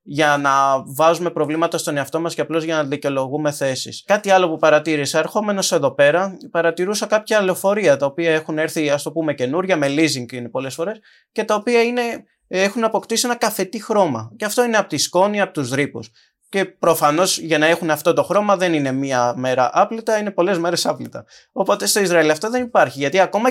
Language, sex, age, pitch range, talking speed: Greek, male, 20-39, 150-195 Hz, 200 wpm